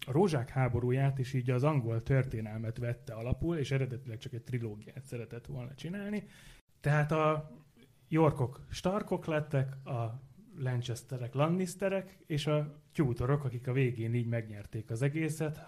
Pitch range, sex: 115-140 Hz, male